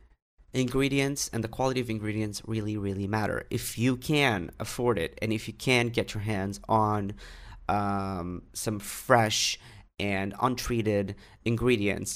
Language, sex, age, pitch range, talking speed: English, male, 30-49, 100-120 Hz, 140 wpm